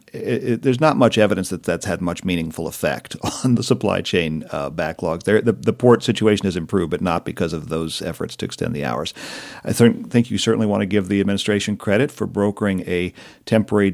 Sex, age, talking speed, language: male, 50-69, 200 wpm, English